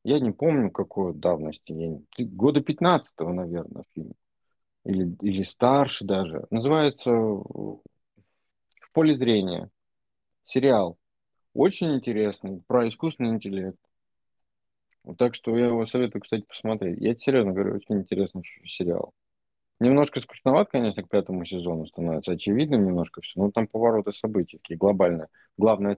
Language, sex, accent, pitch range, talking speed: Russian, male, native, 90-120 Hz, 120 wpm